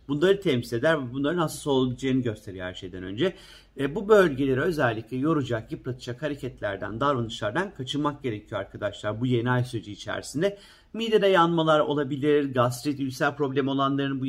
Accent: native